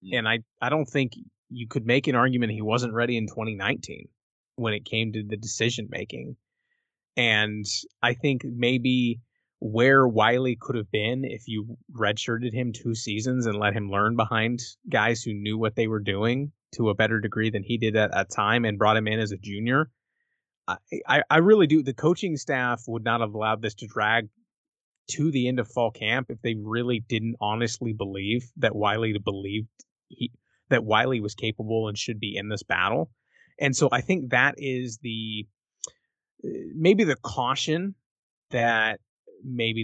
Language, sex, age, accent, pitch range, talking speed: English, male, 20-39, American, 110-125 Hz, 180 wpm